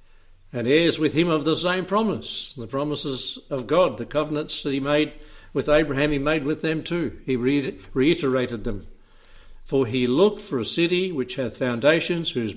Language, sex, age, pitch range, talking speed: English, male, 60-79, 125-160 Hz, 175 wpm